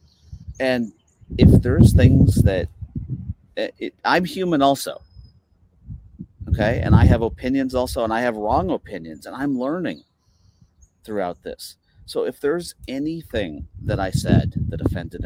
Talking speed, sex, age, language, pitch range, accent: 130 wpm, male, 40-59, English, 90-125 Hz, American